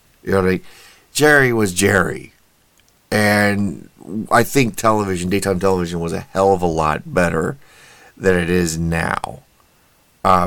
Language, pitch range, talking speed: English, 85-100 Hz, 145 wpm